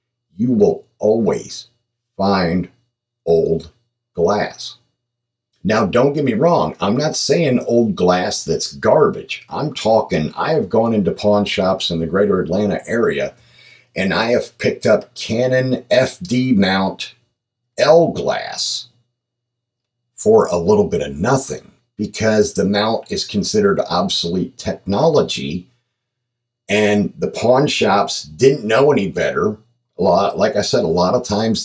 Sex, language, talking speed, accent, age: male, English, 135 wpm, American, 50-69